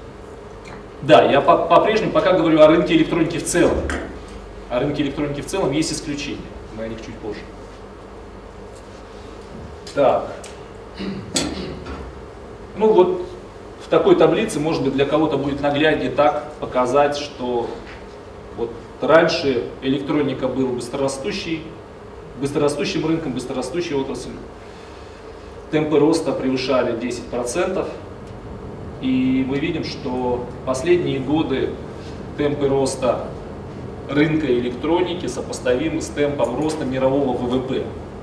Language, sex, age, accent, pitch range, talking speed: Russian, male, 30-49, native, 125-155 Hz, 100 wpm